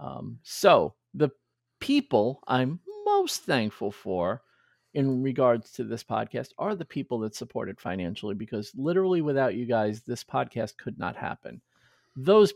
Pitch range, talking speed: 115-145 Hz, 150 wpm